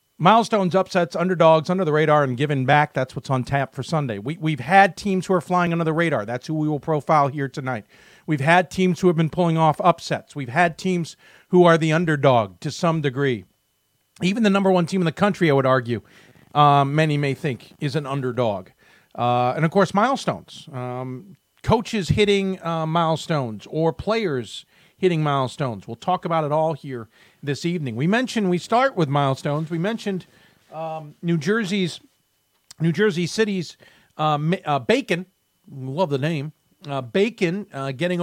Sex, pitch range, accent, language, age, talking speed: male, 140-180 Hz, American, English, 40-59, 180 wpm